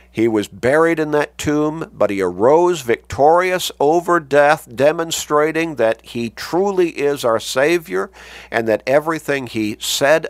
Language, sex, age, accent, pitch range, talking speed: English, male, 50-69, American, 95-150 Hz, 140 wpm